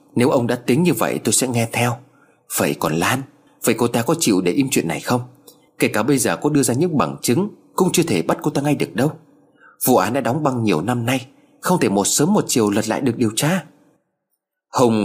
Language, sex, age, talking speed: Vietnamese, male, 30-49, 245 wpm